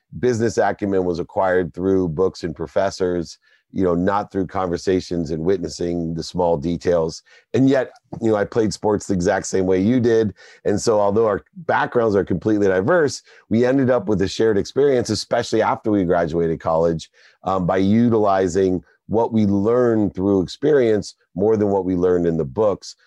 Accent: American